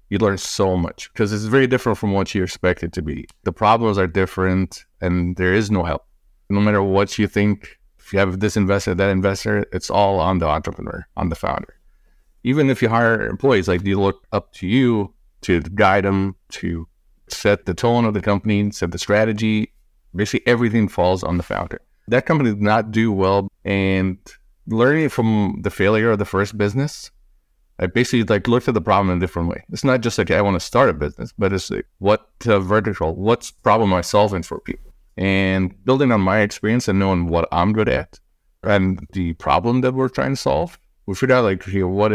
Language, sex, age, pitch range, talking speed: English, male, 30-49, 95-110 Hz, 210 wpm